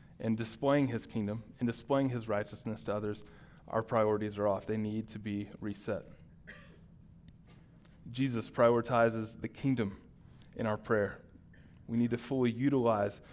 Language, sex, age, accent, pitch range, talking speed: English, male, 20-39, American, 110-125 Hz, 140 wpm